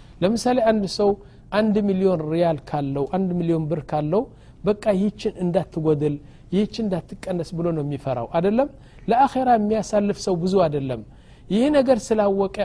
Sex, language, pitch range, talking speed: male, Amharic, 160-205 Hz, 135 wpm